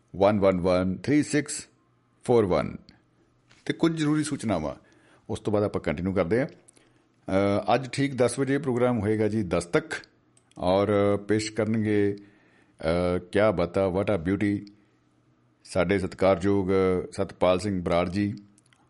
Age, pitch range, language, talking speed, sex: 50-69, 100-135 Hz, Punjabi, 120 wpm, male